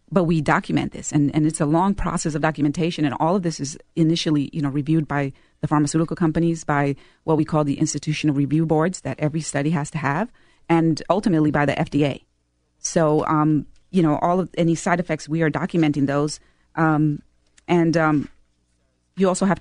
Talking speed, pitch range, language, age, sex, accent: 195 wpm, 150-170 Hz, English, 40-59, female, American